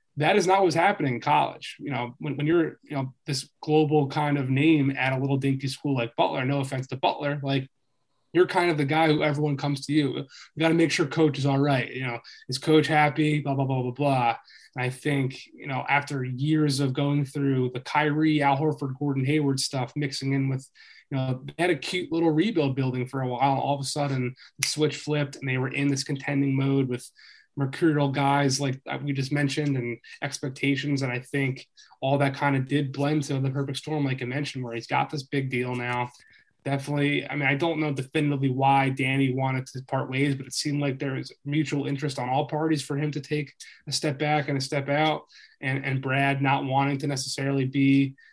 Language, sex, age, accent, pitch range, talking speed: English, male, 20-39, American, 135-150 Hz, 225 wpm